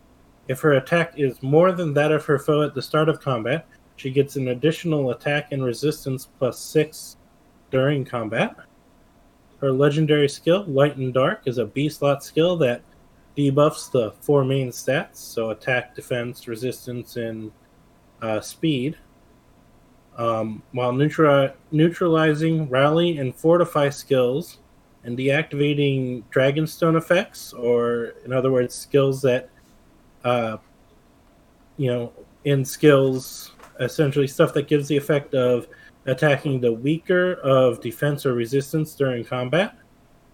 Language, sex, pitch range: English, male, 125-150 Hz